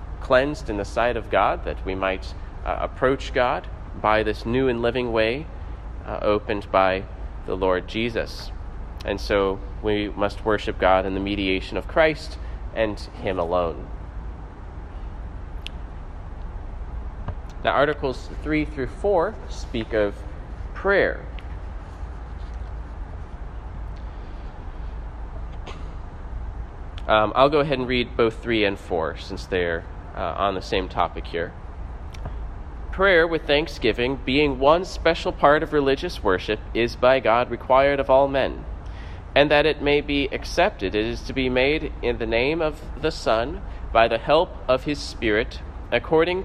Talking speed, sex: 135 wpm, male